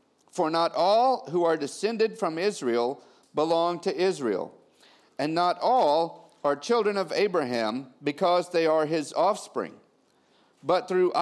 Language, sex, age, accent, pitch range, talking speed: English, male, 50-69, American, 140-185 Hz, 135 wpm